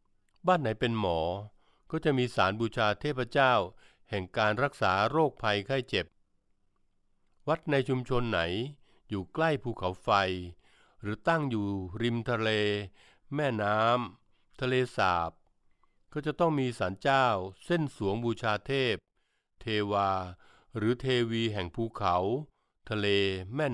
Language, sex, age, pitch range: Thai, male, 60-79, 100-130 Hz